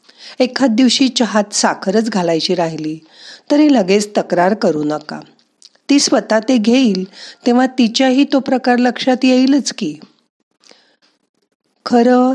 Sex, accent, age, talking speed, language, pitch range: female, native, 50-69, 110 wpm, Marathi, 185-255 Hz